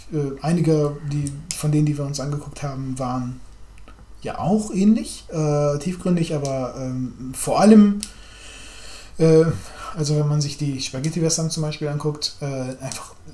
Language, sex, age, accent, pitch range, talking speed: German, male, 20-39, German, 110-155 Hz, 145 wpm